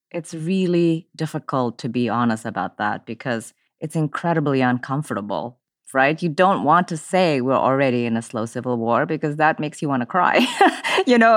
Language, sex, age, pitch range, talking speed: English, female, 30-49, 125-165 Hz, 180 wpm